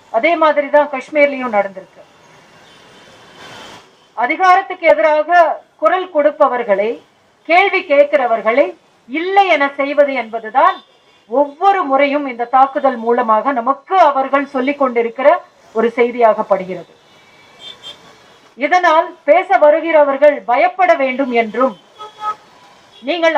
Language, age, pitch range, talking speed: Tamil, 40-59, 245-325 Hz, 80 wpm